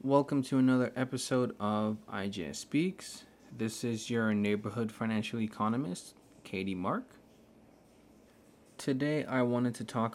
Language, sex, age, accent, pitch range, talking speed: English, male, 20-39, American, 110-130 Hz, 120 wpm